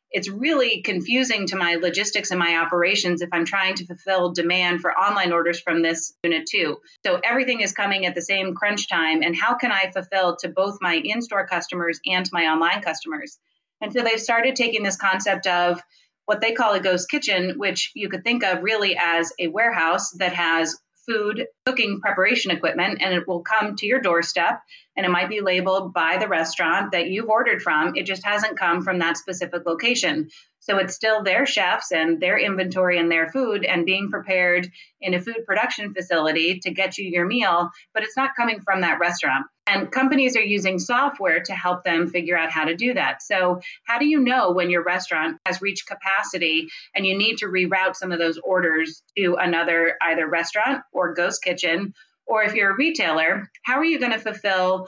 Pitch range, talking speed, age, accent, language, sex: 175-215 Hz, 200 wpm, 30-49, American, English, female